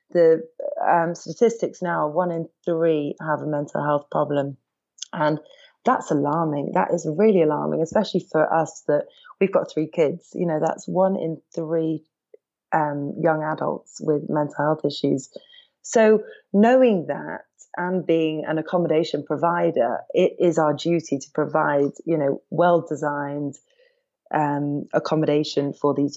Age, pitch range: 30-49, 145-170 Hz